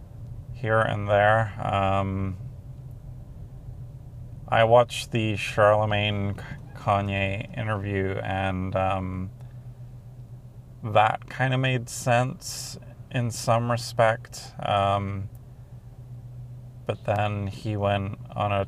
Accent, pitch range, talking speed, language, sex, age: American, 100-125 Hz, 85 wpm, English, male, 30-49